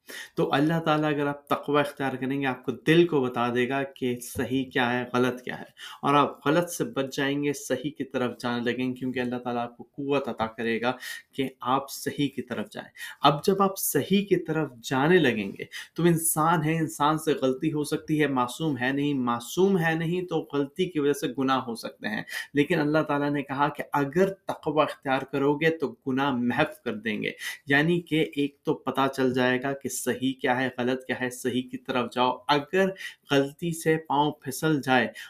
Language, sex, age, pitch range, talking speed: Urdu, male, 30-49, 125-150 Hz, 215 wpm